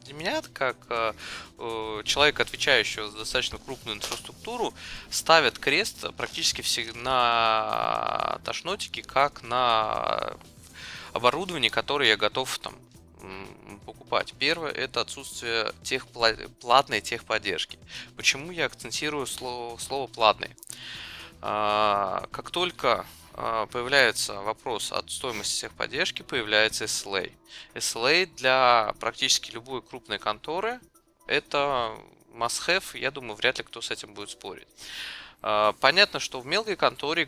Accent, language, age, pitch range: native, Russian, 20-39, 110-145 Hz